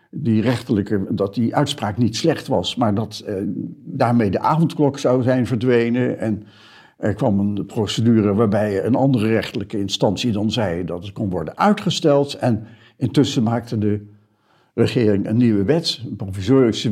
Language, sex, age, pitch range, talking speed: Dutch, male, 60-79, 105-145 Hz, 155 wpm